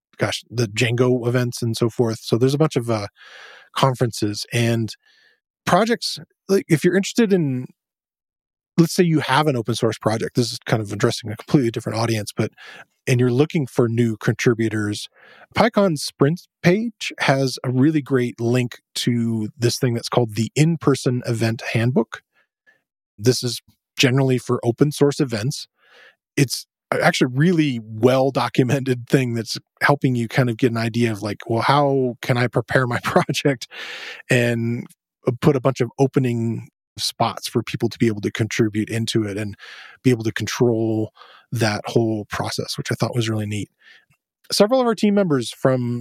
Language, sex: English, male